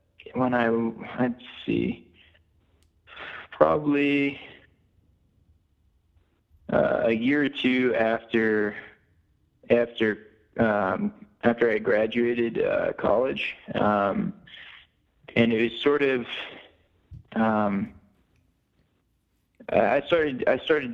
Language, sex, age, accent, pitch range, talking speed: English, male, 20-39, American, 105-120 Hz, 85 wpm